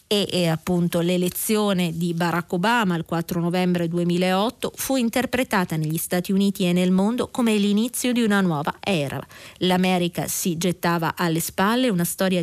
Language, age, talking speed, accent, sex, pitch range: Italian, 30-49, 155 wpm, native, female, 170-210 Hz